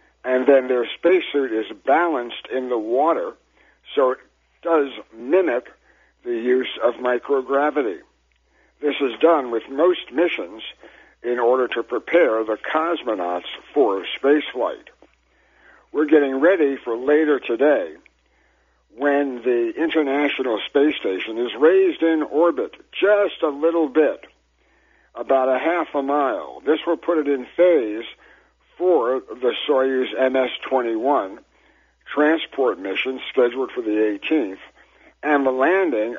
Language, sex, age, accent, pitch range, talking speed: English, male, 60-79, American, 125-170 Hz, 125 wpm